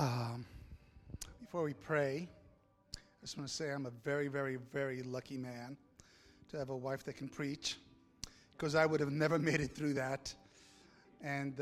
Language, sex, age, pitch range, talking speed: English, male, 30-49, 130-155 Hz, 170 wpm